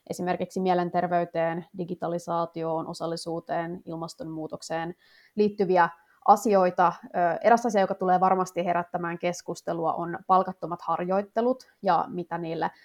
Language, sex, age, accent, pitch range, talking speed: Finnish, female, 20-39, native, 170-205 Hz, 95 wpm